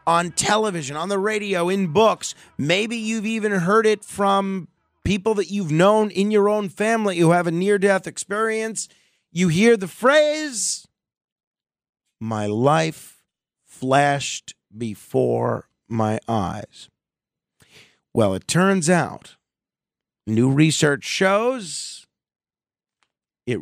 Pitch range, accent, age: 130-195 Hz, American, 40-59